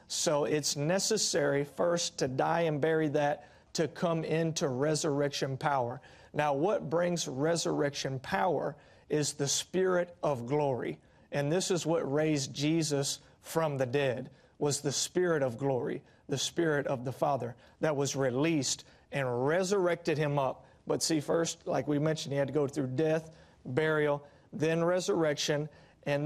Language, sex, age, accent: English, male, 40-59, American